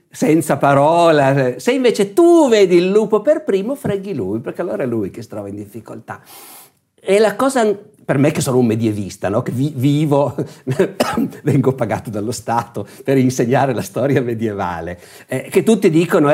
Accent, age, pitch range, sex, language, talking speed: native, 50-69, 115-160 Hz, male, Italian, 175 wpm